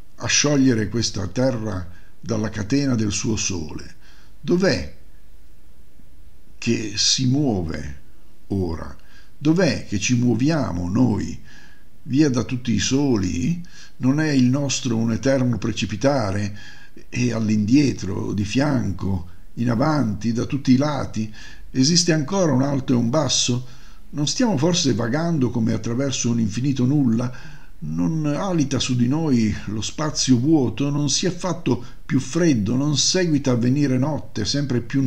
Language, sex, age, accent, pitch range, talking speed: Italian, male, 50-69, native, 105-140 Hz, 135 wpm